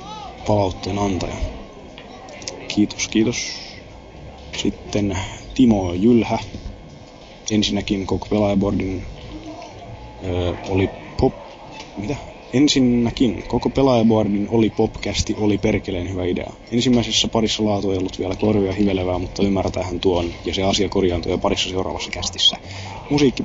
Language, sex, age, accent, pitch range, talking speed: Finnish, male, 20-39, native, 95-115 Hz, 105 wpm